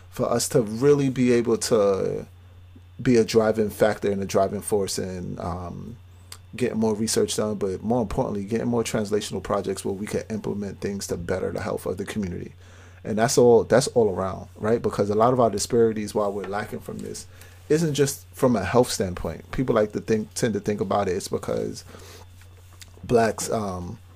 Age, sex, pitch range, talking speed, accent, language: 30-49, male, 90-115 Hz, 190 wpm, American, English